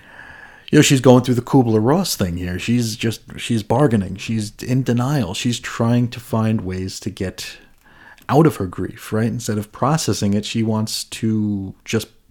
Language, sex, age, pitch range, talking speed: English, male, 30-49, 100-125 Hz, 180 wpm